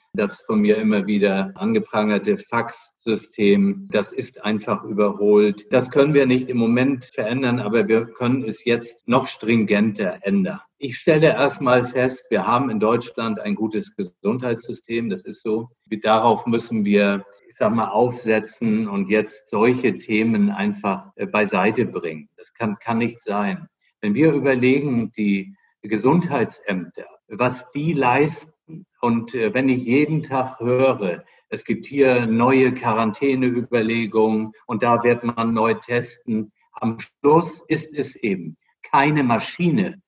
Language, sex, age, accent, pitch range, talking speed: English, male, 50-69, German, 110-150 Hz, 135 wpm